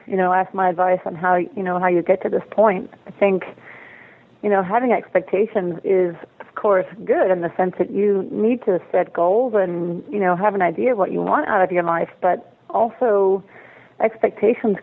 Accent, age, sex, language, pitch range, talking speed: American, 30-49, female, English, 180-220 Hz, 205 wpm